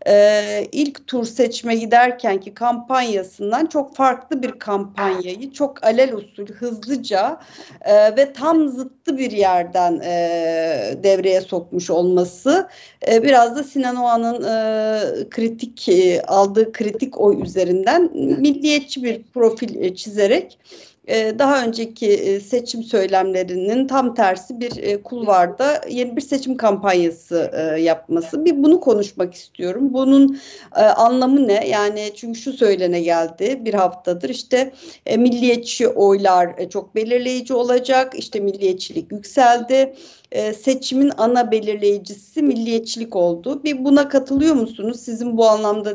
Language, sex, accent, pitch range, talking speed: Turkish, female, native, 205-270 Hz, 115 wpm